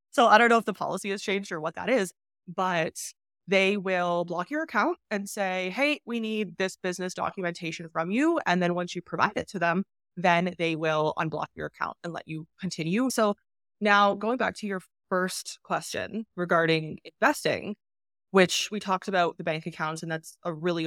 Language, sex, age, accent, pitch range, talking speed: English, female, 20-39, American, 170-215 Hz, 195 wpm